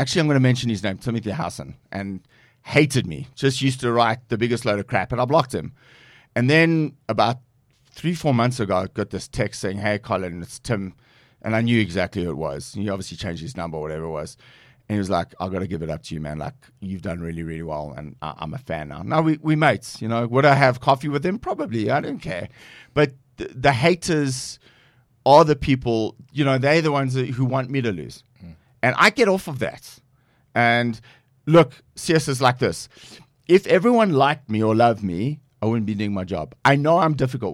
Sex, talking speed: male, 230 wpm